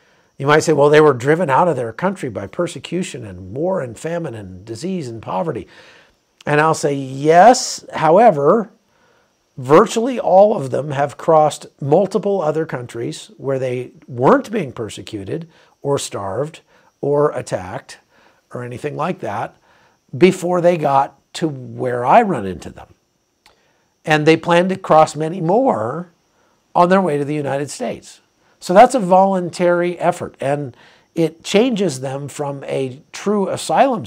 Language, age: English, 50-69